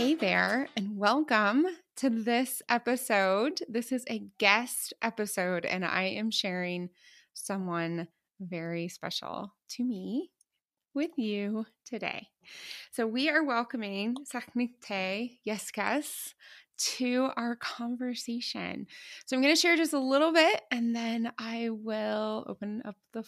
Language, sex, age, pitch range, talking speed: English, female, 20-39, 200-270 Hz, 125 wpm